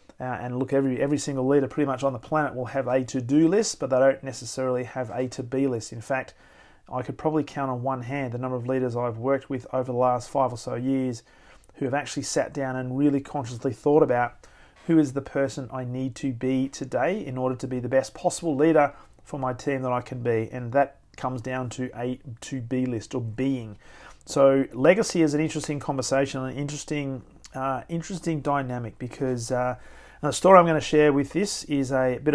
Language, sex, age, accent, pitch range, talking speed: English, male, 40-59, Australian, 130-150 Hz, 220 wpm